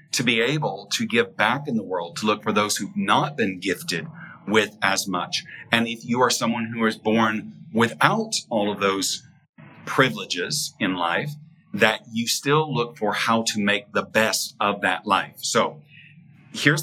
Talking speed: 180 wpm